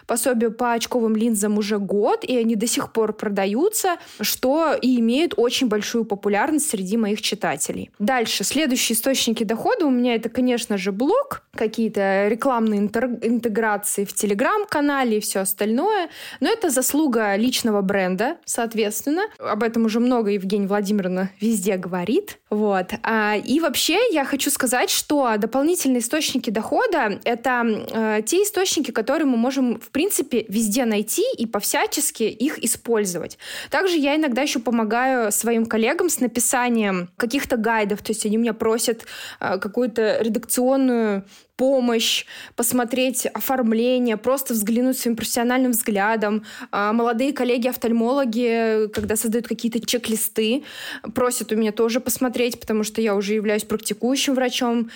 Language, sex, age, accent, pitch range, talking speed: Russian, female, 20-39, native, 215-265 Hz, 135 wpm